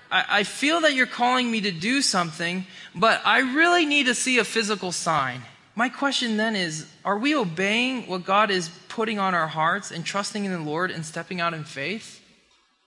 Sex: male